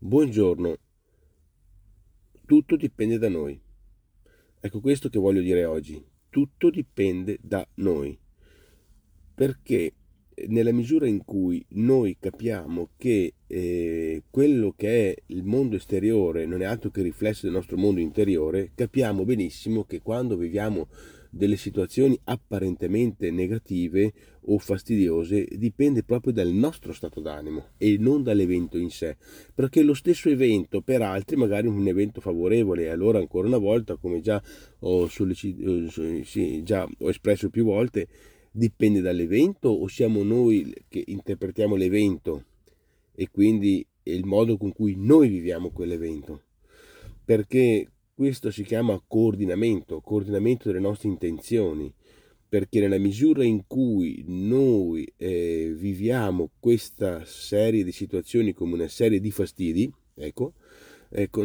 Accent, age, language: native, 40-59, Italian